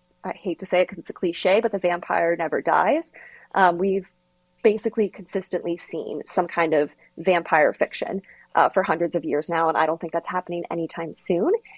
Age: 20-39